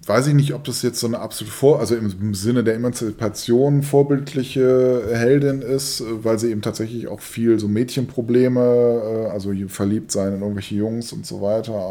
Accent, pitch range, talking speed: German, 105-125 Hz, 175 wpm